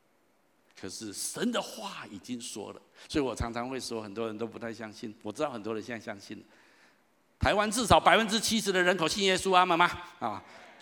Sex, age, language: male, 50-69, Chinese